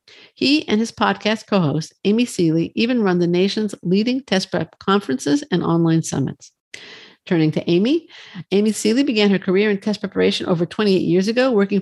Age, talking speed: 50-69, 175 wpm